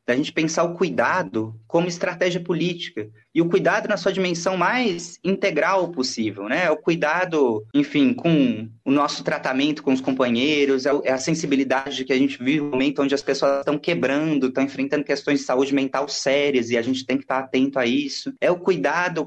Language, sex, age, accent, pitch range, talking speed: Portuguese, male, 20-39, Brazilian, 130-180 Hz, 190 wpm